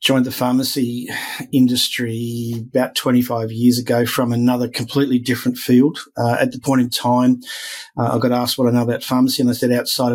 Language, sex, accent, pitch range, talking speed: English, male, Australian, 120-130 Hz, 190 wpm